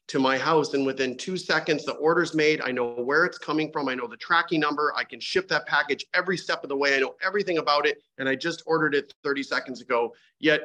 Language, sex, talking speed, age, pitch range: English, male, 255 wpm, 40-59, 135-160 Hz